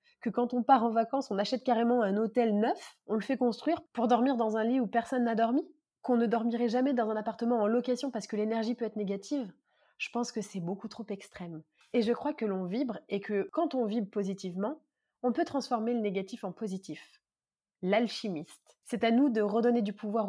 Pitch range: 200-250 Hz